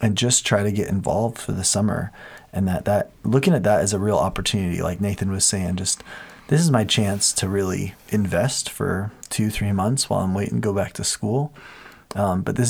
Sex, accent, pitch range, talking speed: male, American, 95-110 Hz, 215 wpm